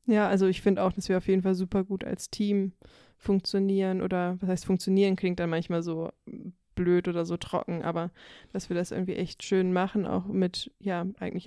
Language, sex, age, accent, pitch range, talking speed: German, female, 20-39, German, 170-190 Hz, 205 wpm